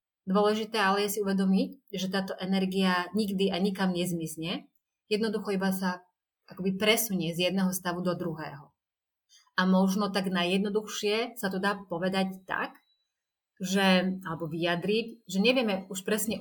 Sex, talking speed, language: female, 140 wpm, Slovak